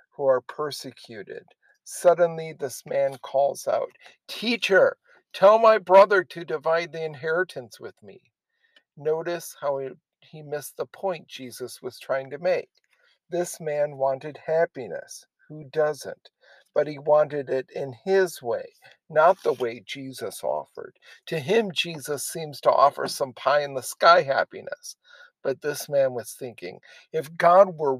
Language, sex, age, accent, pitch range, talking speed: English, male, 50-69, American, 140-190 Hz, 145 wpm